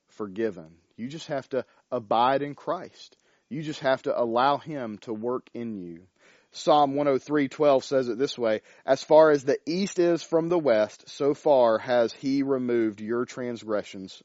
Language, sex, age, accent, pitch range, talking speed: English, male, 40-59, American, 115-155 Hz, 170 wpm